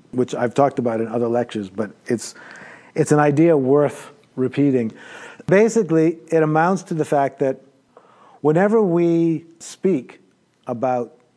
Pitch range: 125-160 Hz